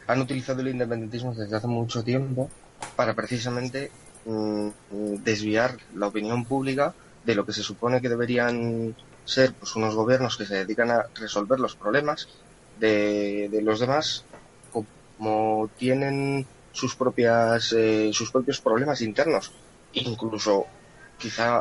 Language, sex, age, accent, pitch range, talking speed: Spanish, male, 20-39, Spanish, 110-125 Hz, 135 wpm